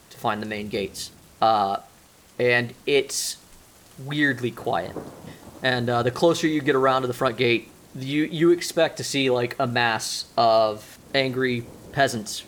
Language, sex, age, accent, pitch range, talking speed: English, male, 30-49, American, 120-135 Hz, 150 wpm